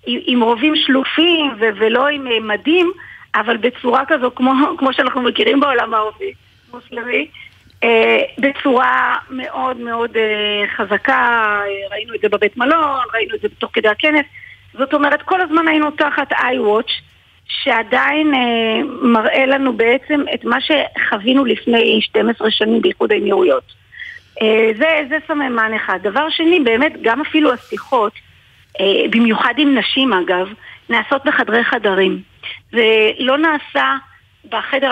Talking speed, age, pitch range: 120 wpm, 40-59, 220-295 Hz